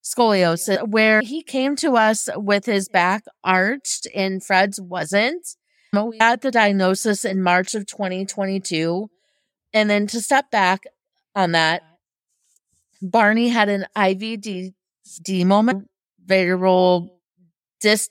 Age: 30-49